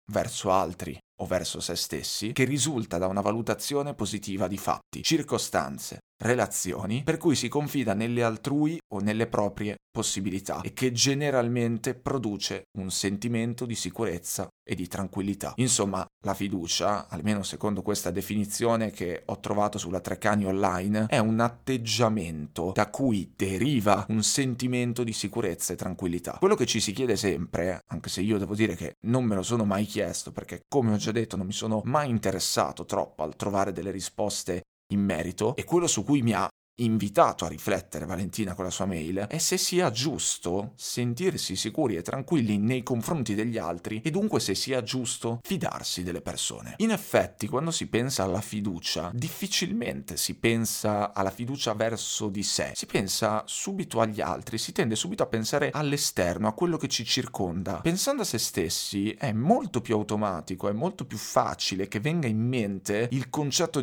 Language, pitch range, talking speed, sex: Italian, 95-125 Hz, 170 wpm, male